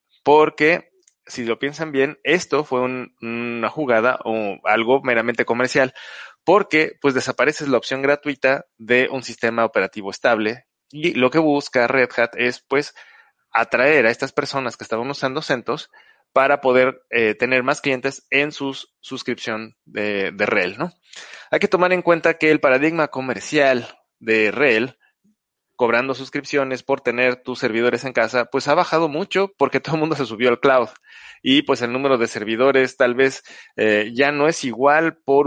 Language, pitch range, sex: Spanish, 115-145 Hz, male